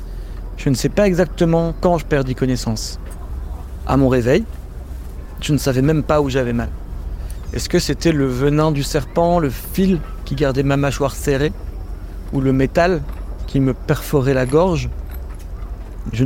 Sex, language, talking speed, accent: male, French, 160 wpm, French